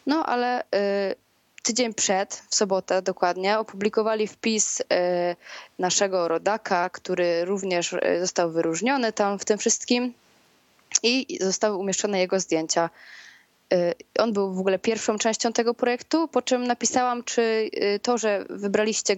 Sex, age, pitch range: female, 20-39, 185-225 Hz